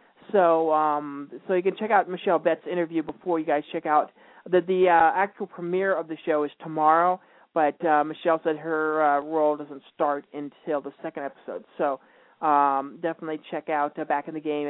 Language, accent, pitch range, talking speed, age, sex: English, American, 150-190 Hz, 195 wpm, 40-59, male